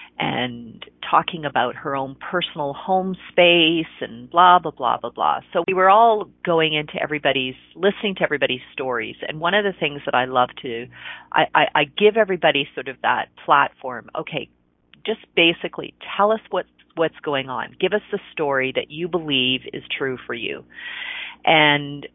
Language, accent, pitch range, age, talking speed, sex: English, American, 145-195 Hz, 40-59, 175 wpm, female